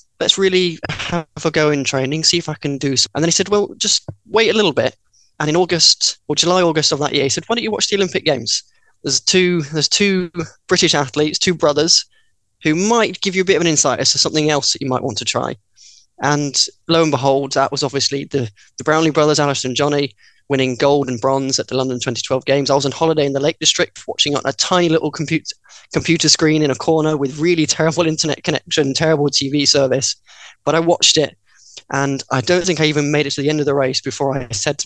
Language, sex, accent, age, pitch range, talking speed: English, male, British, 10-29, 130-155 Hz, 240 wpm